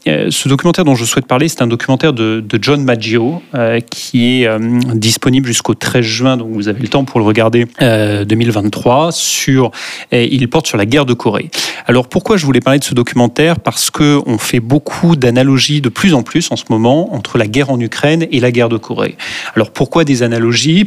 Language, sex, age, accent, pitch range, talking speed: French, male, 30-49, French, 115-145 Hz, 215 wpm